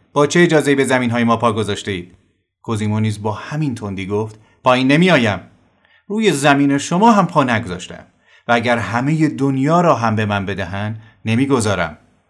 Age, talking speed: 30-49, 160 wpm